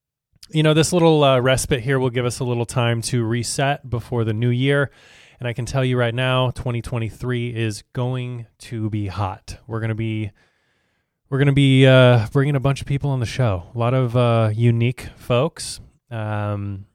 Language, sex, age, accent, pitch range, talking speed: English, male, 20-39, American, 110-130 Hz, 200 wpm